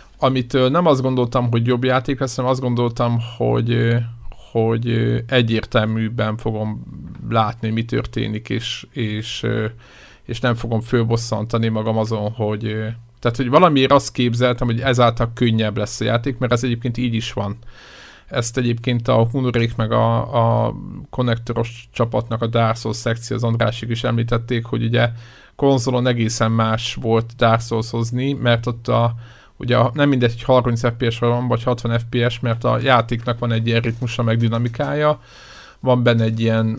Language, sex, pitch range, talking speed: Hungarian, male, 115-125 Hz, 155 wpm